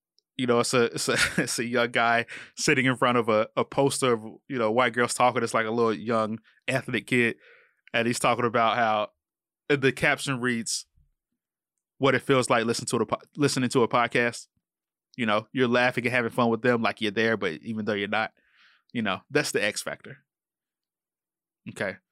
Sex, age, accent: male, 20-39, American